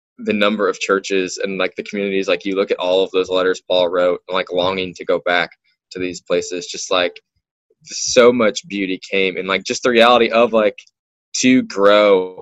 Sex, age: male, 10-29